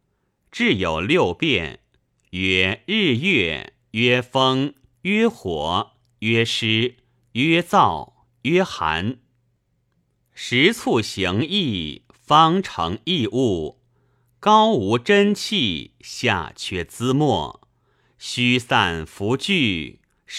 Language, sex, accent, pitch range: Chinese, male, native, 110-160 Hz